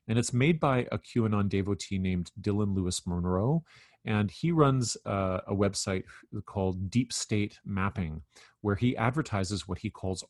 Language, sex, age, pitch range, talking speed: English, male, 40-59, 95-120 Hz, 155 wpm